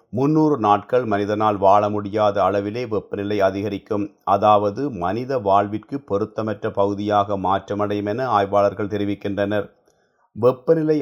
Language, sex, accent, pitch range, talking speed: Tamil, male, native, 100-115 Hz, 100 wpm